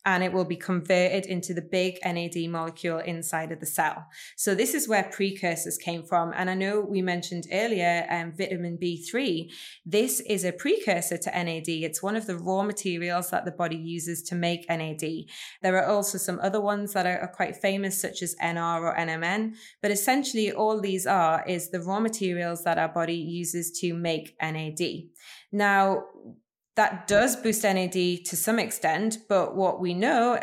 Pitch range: 170-205 Hz